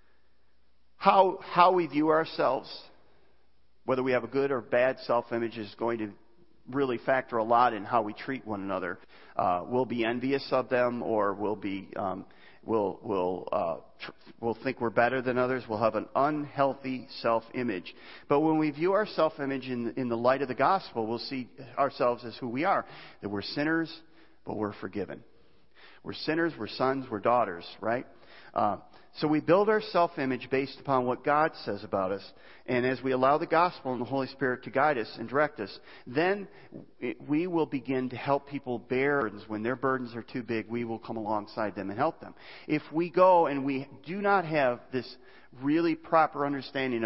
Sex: male